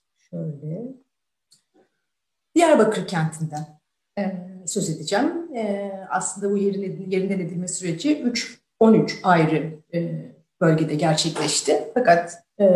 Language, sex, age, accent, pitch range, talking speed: Turkish, female, 40-59, native, 160-210 Hz, 100 wpm